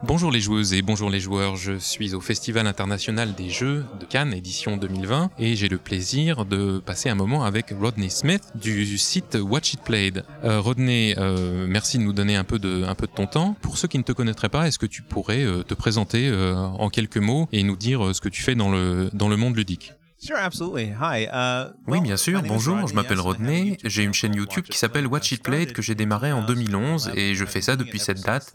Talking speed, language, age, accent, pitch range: 225 wpm, French, 20-39, French, 100-130 Hz